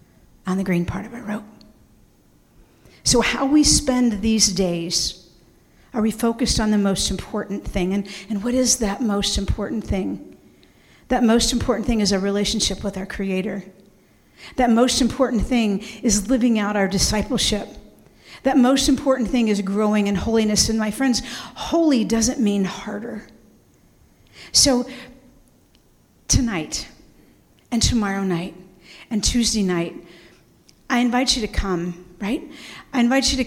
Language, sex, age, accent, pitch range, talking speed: English, female, 50-69, American, 195-245 Hz, 145 wpm